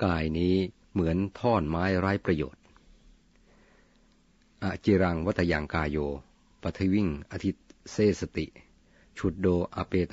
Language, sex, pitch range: Thai, male, 80-95 Hz